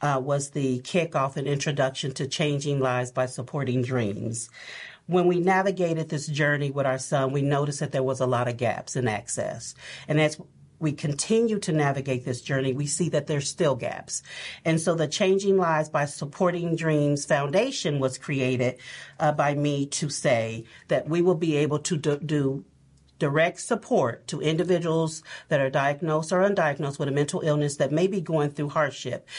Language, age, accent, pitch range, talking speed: English, 50-69, American, 140-170 Hz, 180 wpm